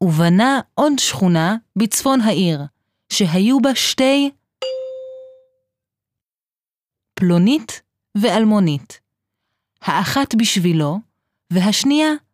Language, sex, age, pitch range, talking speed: Hebrew, female, 30-49, 175-265 Hz, 65 wpm